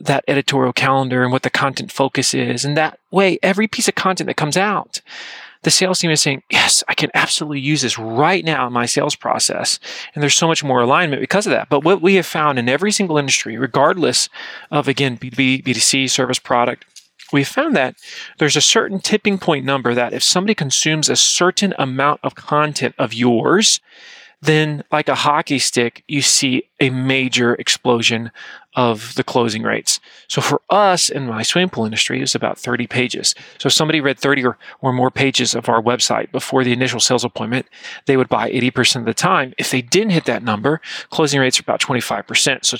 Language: English